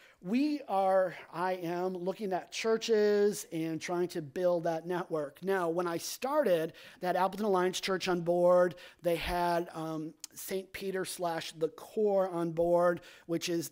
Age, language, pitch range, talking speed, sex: 30-49, English, 165-195 Hz, 155 wpm, male